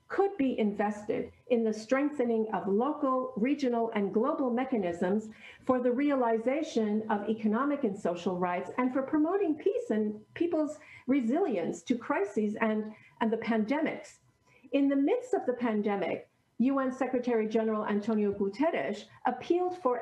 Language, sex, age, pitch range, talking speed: English, female, 50-69, 220-280 Hz, 140 wpm